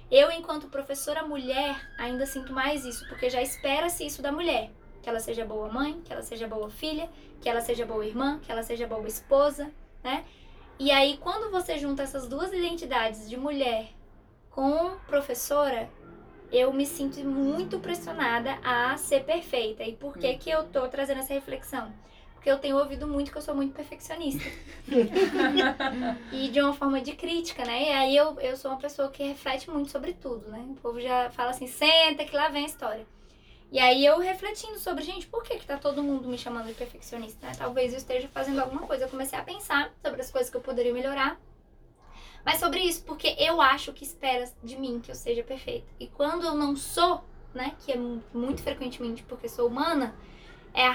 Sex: female